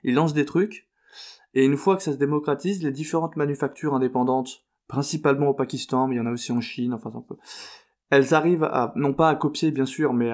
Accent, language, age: French, French, 20-39